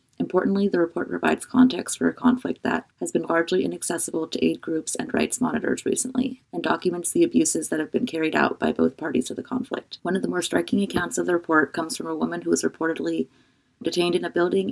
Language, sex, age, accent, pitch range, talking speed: English, female, 30-49, American, 155-235 Hz, 225 wpm